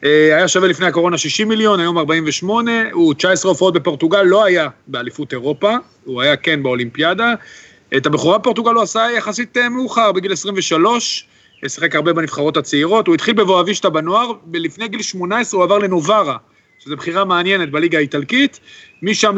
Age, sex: 40-59, male